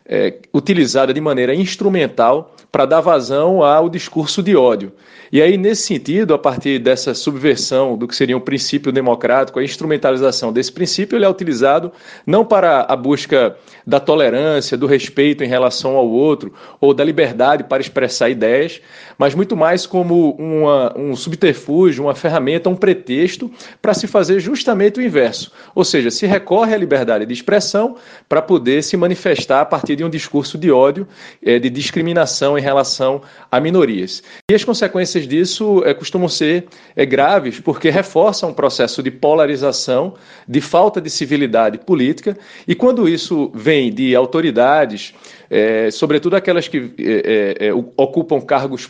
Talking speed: 155 wpm